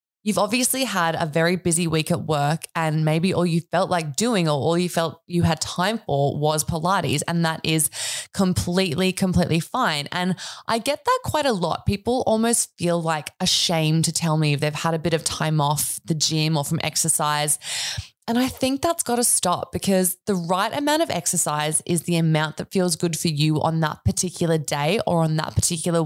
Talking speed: 205 wpm